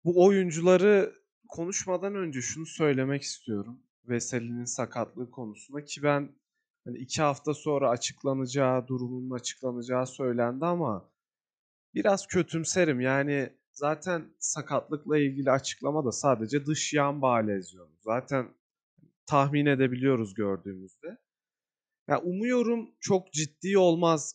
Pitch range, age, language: 125-195 Hz, 30-49, Turkish